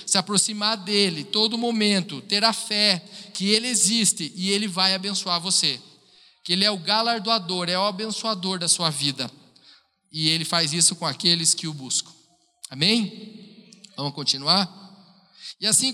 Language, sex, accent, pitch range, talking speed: Portuguese, male, Brazilian, 165-215 Hz, 155 wpm